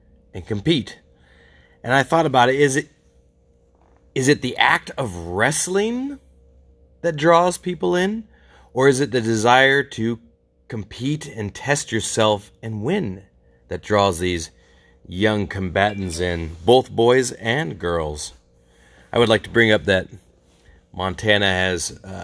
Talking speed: 135 wpm